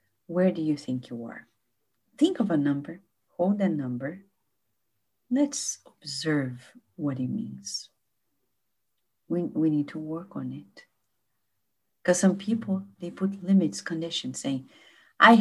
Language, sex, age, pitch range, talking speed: English, female, 50-69, 125-200 Hz, 130 wpm